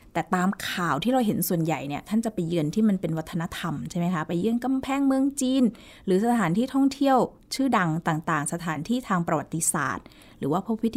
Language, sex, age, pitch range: Thai, female, 20-39, 165-215 Hz